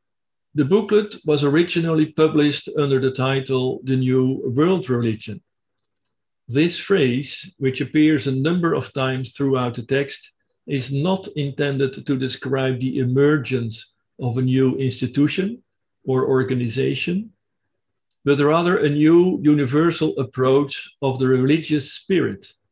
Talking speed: 120 wpm